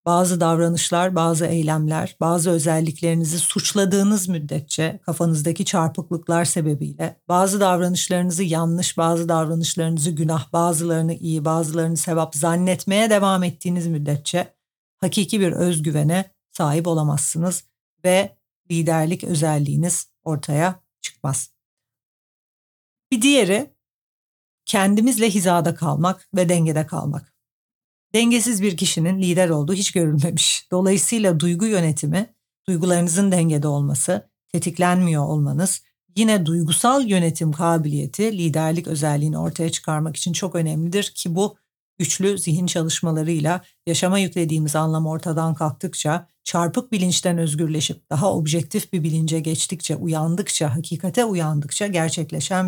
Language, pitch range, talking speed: Turkish, 160-185 Hz, 105 wpm